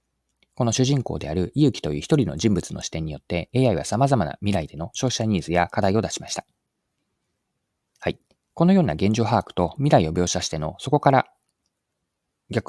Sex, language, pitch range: male, Japanese, 85-125 Hz